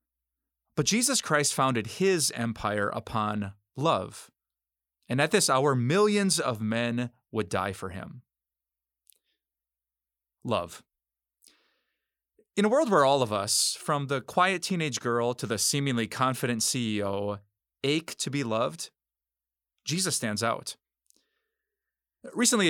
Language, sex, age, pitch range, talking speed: English, male, 30-49, 105-155 Hz, 120 wpm